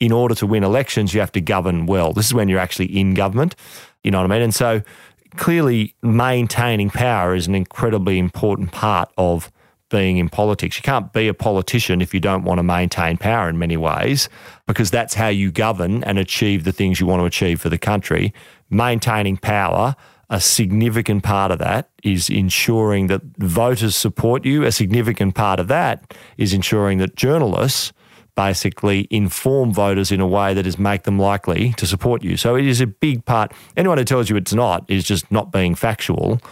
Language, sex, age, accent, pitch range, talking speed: English, male, 40-59, Australian, 95-115 Hz, 195 wpm